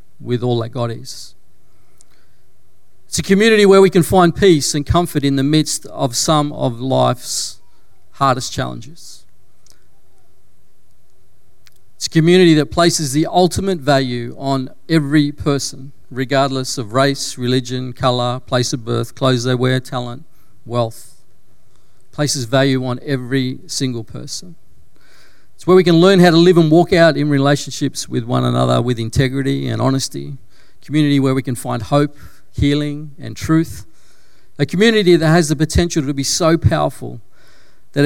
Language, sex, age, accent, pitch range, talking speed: English, male, 40-59, Australian, 115-150 Hz, 150 wpm